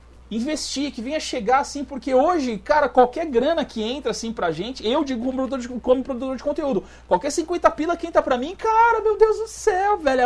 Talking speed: 220 wpm